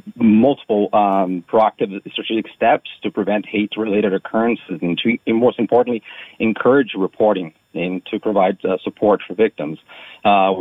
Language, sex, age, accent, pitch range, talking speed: English, male, 40-59, American, 100-115 Hz, 135 wpm